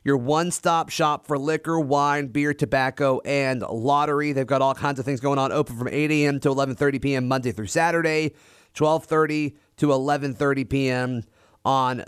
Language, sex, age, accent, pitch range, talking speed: English, male, 30-49, American, 125-145 Hz, 165 wpm